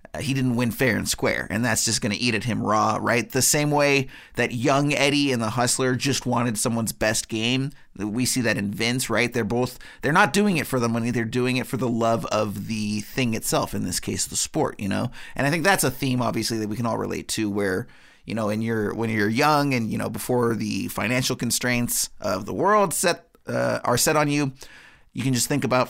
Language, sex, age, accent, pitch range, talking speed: English, male, 30-49, American, 110-135 Hz, 240 wpm